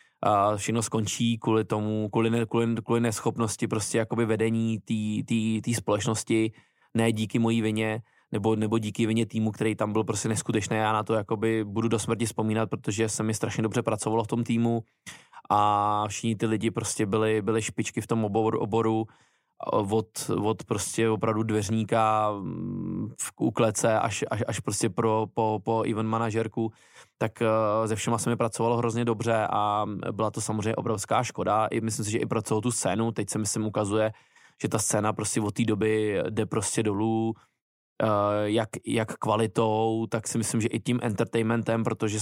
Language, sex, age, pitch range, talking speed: Czech, male, 20-39, 110-115 Hz, 170 wpm